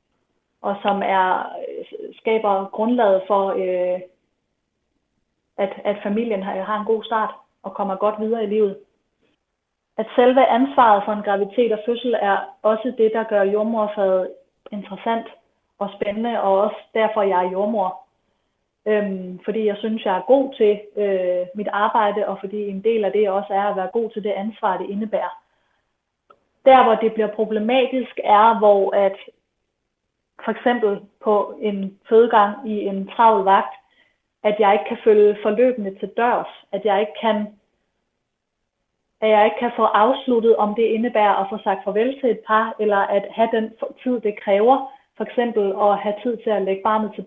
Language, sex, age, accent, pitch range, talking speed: Danish, female, 30-49, native, 200-225 Hz, 165 wpm